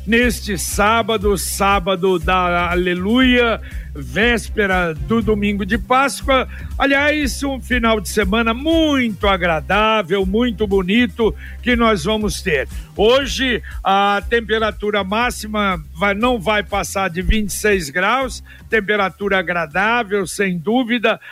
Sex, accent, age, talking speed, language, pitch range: male, Brazilian, 60-79, 105 wpm, Portuguese, 200-240 Hz